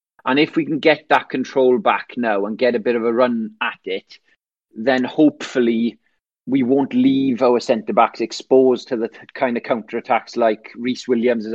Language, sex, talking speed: English, male, 180 wpm